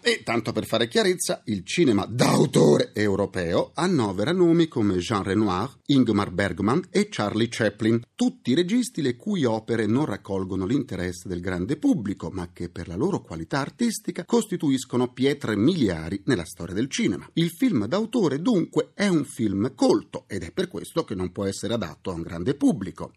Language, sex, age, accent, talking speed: Italian, male, 40-59, native, 170 wpm